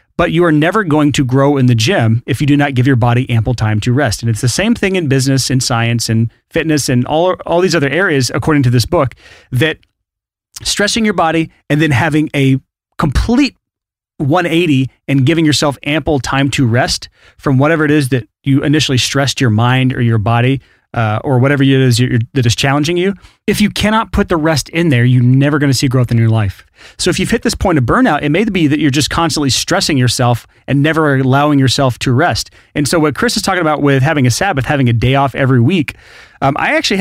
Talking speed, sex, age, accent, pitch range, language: 230 wpm, male, 30-49, American, 125-160 Hz, English